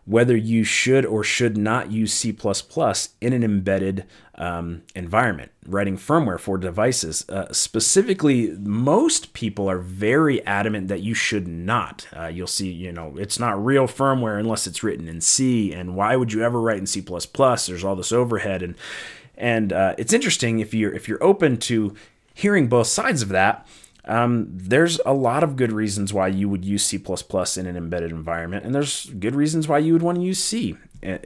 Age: 30-49